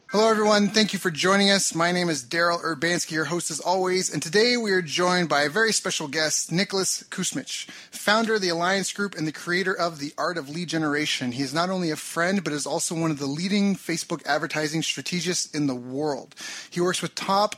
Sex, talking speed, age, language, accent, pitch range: male, 220 wpm, 30-49, English, American, 150-185 Hz